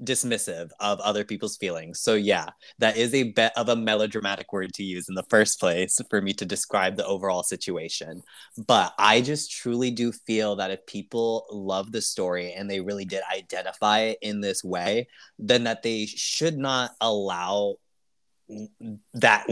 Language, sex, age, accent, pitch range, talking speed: English, male, 20-39, American, 100-125 Hz, 170 wpm